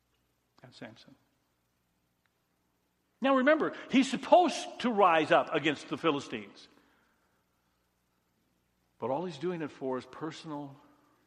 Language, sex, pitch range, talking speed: English, male, 130-200 Hz, 105 wpm